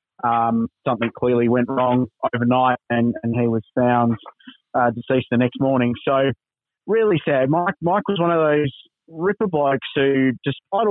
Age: 30-49